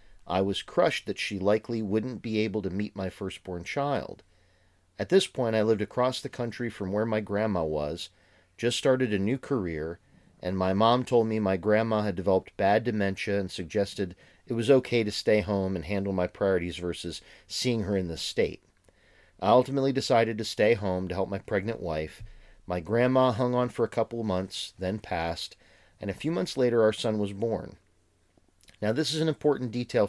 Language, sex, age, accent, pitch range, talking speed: English, male, 40-59, American, 90-125 Hz, 195 wpm